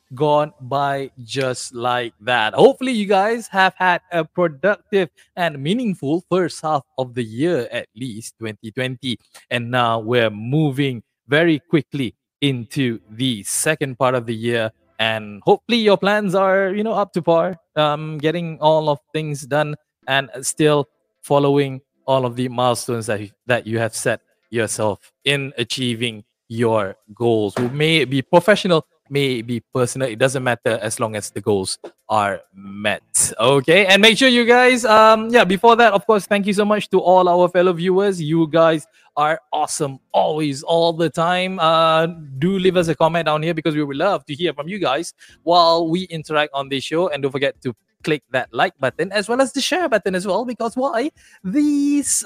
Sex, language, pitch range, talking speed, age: male, English, 125-180 Hz, 180 wpm, 20-39